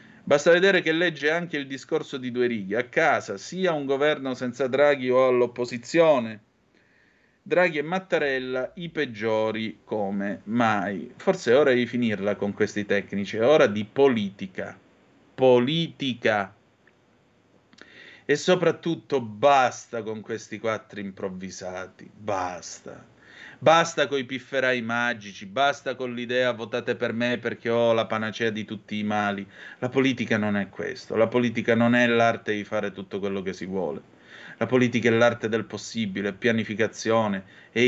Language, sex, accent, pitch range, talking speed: Italian, male, native, 110-145 Hz, 145 wpm